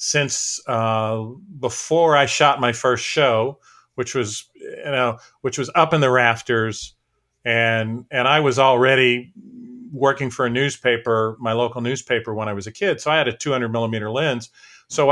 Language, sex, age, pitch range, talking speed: English, male, 40-59, 115-140 Hz, 170 wpm